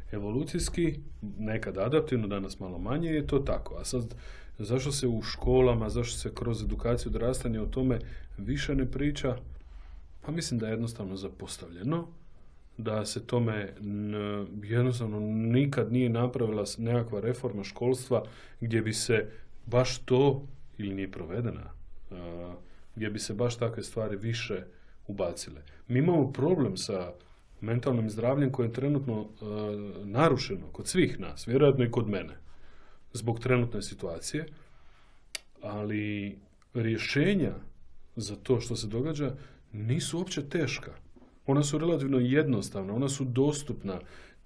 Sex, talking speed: male, 130 wpm